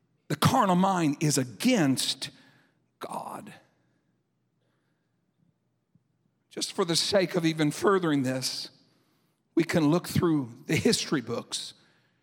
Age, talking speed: 60-79, 105 wpm